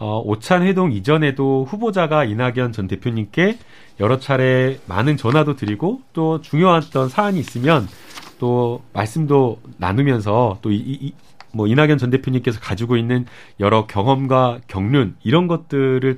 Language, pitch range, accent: Korean, 120-165 Hz, native